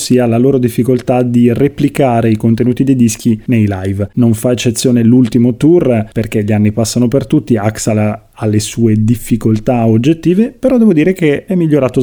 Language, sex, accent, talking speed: Italian, male, native, 170 wpm